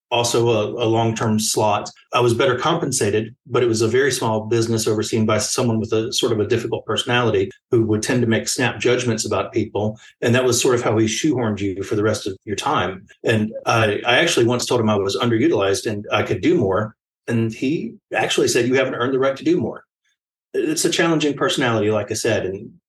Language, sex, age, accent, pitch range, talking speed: English, male, 40-59, American, 110-125 Hz, 225 wpm